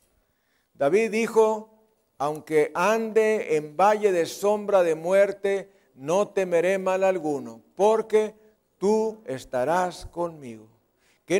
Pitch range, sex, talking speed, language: 180-225 Hz, male, 100 wpm, Spanish